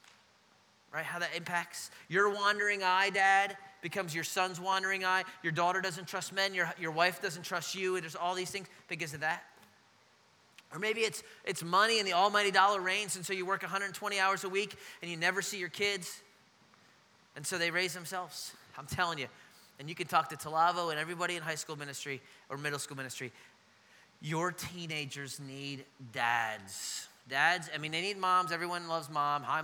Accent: American